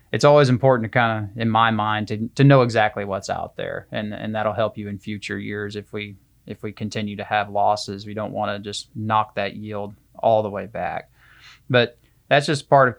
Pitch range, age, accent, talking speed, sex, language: 105-115 Hz, 20-39, American, 225 wpm, male, English